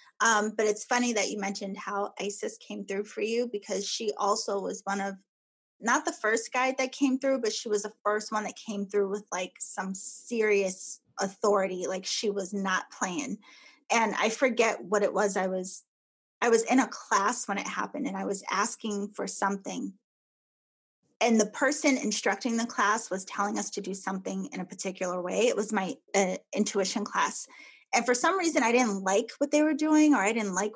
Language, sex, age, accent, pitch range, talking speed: English, female, 20-39, American, 200-245 Hz, 205 wpm